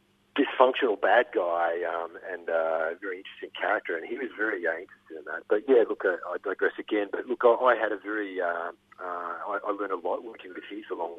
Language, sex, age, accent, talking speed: English, male, 40-59, Australian, 225 wpm